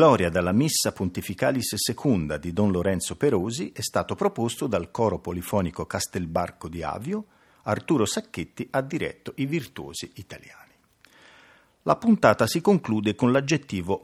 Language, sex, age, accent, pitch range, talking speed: Italian, male, 50-69, native, 95-145 Hz, 135 wpm